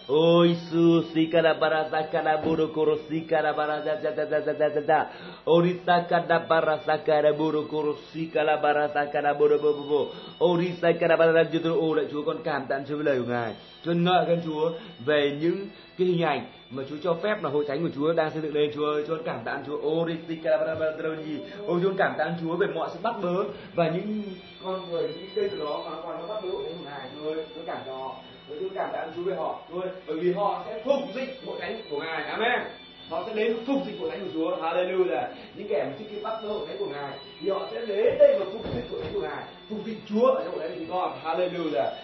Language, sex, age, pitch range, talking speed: Vietnamese, male, 30-49, 160-215 Hz, 120 wpm